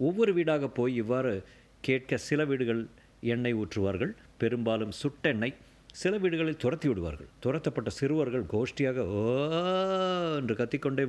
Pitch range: 110-145 Hz